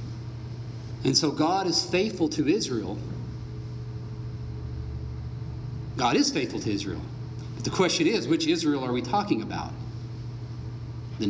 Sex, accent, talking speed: male, American, 120 wpm